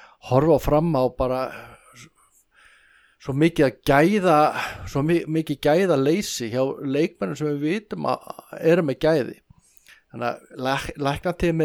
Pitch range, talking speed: 125-155 Hz, 135 wpm